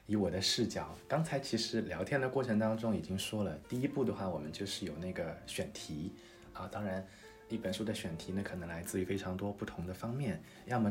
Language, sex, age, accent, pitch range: Chinese, male, 20-39, native, 95-110 Hz